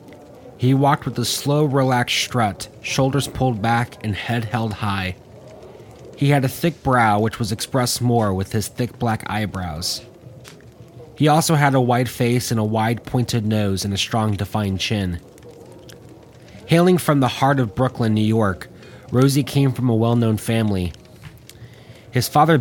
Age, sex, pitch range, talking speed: 30-49, male, 105-125 Hz, 160 wpm